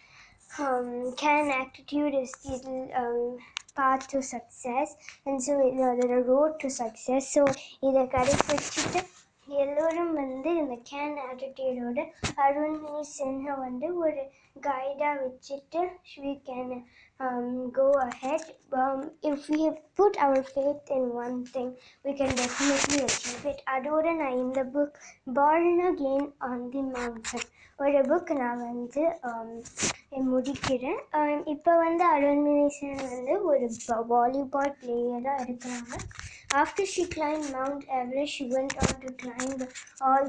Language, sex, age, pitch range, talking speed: Tamil, male, 20-39, 250-285 Hz, 135 wpm